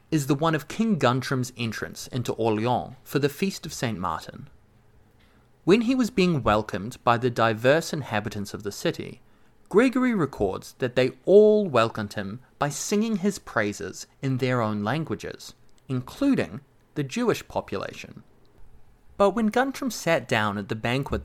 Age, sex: 30-49, male